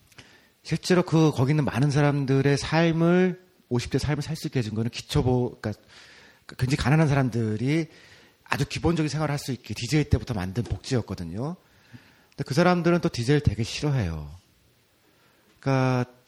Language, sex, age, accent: Korean, male, 40-59, native